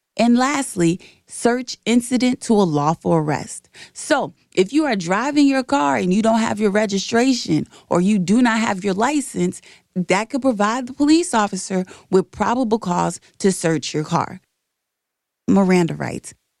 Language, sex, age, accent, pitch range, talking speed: English, female, 30-49, American, 175-235 Hz, 155 wpm